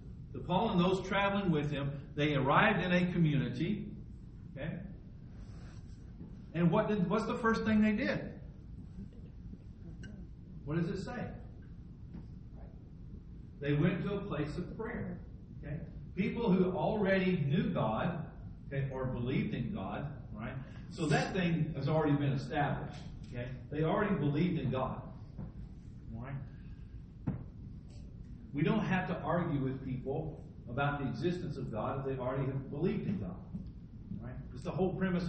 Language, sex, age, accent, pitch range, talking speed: English, male, 50-69, American, 130-175 Hz, 140 wpm